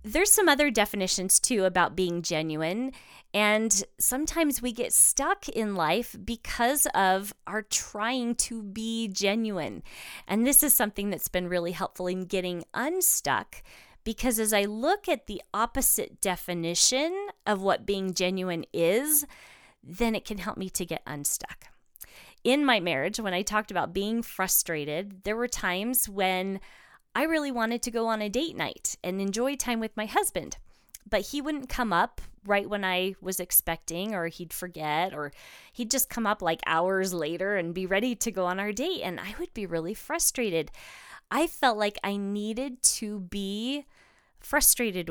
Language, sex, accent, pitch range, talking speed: English, female, American, 185-245 Hz, 165 wpm